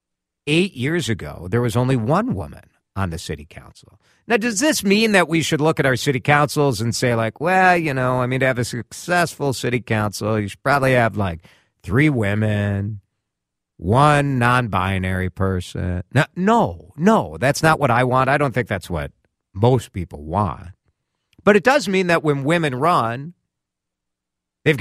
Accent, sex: American, male